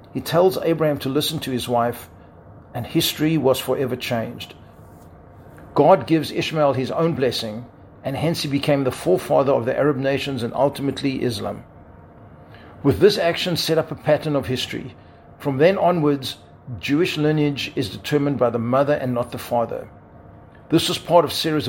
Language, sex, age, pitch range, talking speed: English, male, 50-69, 125-155 Hz, 165 wpm